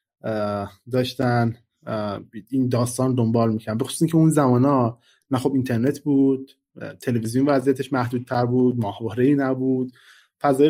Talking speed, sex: 120 wpm, male